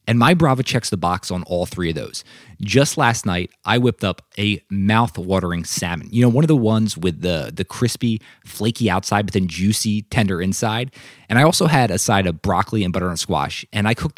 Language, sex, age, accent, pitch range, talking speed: English, male, 20-39, American, 95-125 Hz, 215 wpm